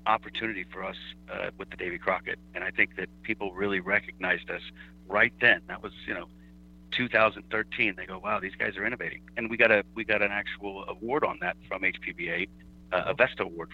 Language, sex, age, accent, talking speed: English, male, 50-69, American, 205 wpm